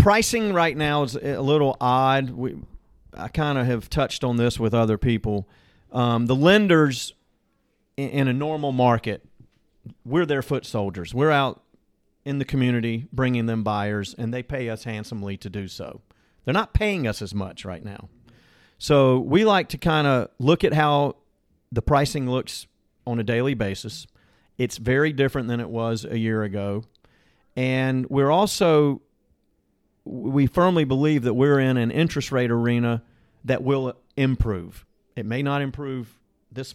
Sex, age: male, 40-59